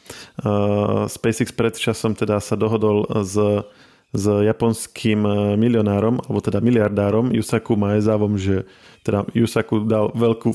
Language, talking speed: Slovak, 115 wpm